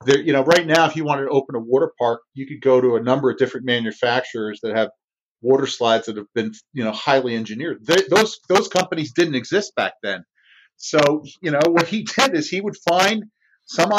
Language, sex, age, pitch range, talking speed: English, male, 40-59, 145-210 Hz, 225 wpm